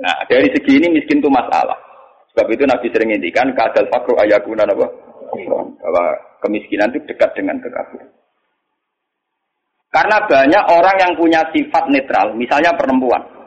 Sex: male